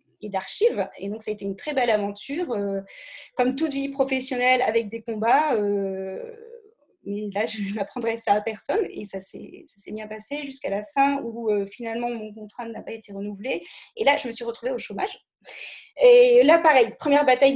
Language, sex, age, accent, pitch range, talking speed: French, female, 20-39, French, 215-265 Hz, 200 wpm